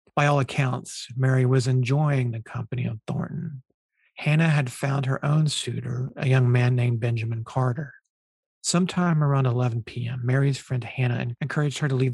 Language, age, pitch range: English, 40-59, 125-145 Hz